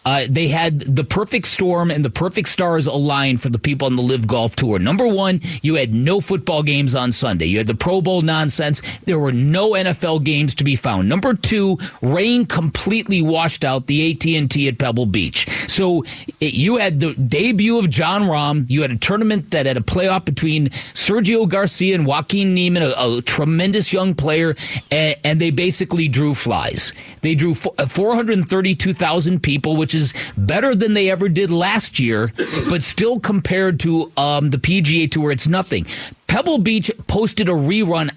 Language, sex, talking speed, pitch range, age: English, male, 180 wpm, 140-185 Hz, 40-59